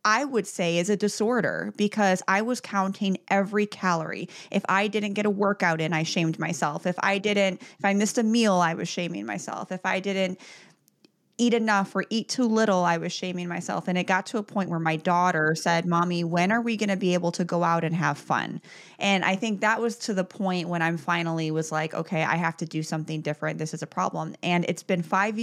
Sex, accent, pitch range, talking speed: female, American, 165-200 Hz, 235 wpm